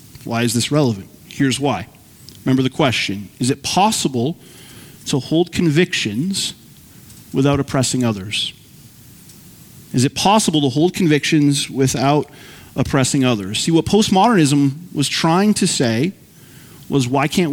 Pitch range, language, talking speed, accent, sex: 130-155 Hz, English, 125 wpm, American, male